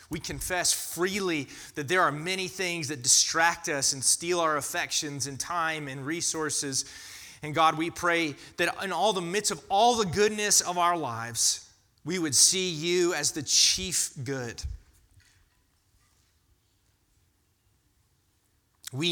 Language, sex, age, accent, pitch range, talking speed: English, male, 30-49, American, 95-140 Hz, 140 wpm